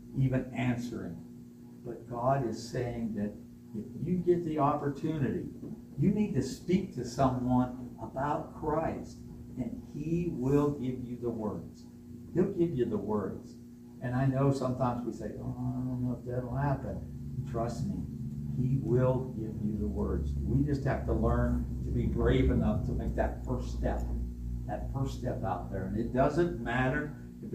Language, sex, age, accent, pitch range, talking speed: English, male, 60-79, American, 105-135 Hz, 170 wpm